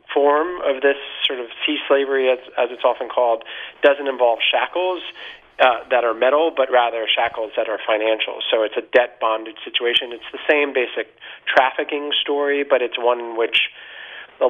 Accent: American